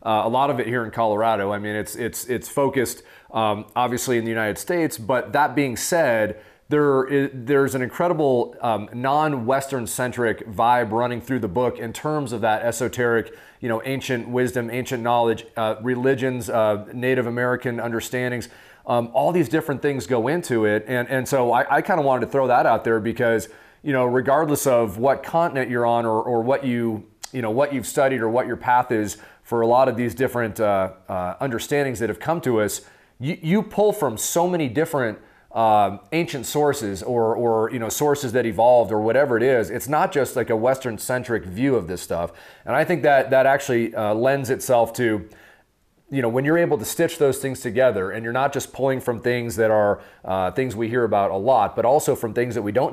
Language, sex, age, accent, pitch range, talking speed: English, male, 30-49, American, 115-135 Hz, 210 wpm